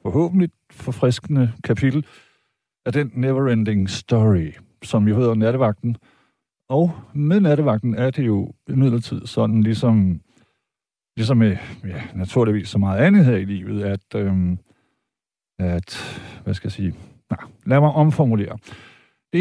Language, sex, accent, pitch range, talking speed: Danish, male, native, 110-155 Hz, 130 wpm